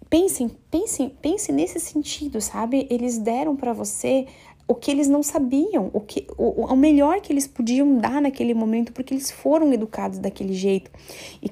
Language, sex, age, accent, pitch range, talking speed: Portuguese, female, 10-29, Brazilian, 205-255 Hz, 170 wpm